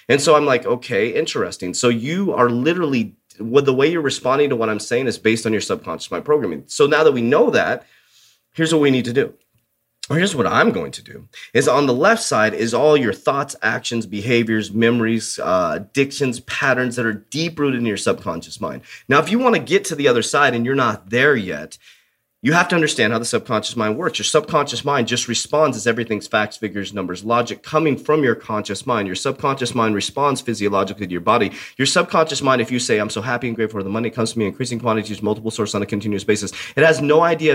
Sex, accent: male, American